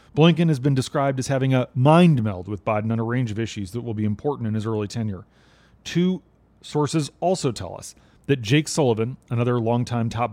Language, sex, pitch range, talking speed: English, male, 110-145 Hz, 205 wpm